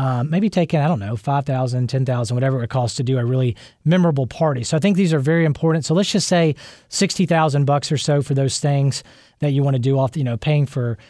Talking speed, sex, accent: 265 wpm, male, American